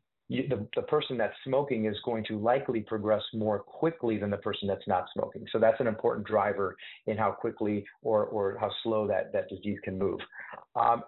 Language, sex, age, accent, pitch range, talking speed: English, male, 30-49, American, 105-135 Hz, 195 wpm